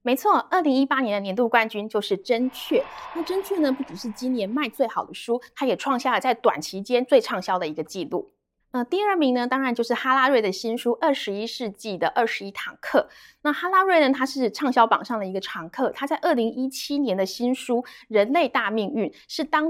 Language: Chinese